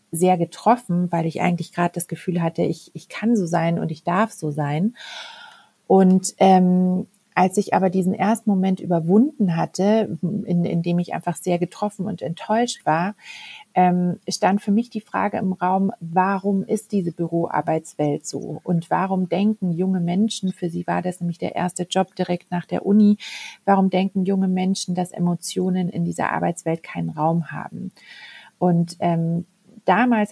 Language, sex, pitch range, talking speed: German, female, 170-195 Hz, 165 wpm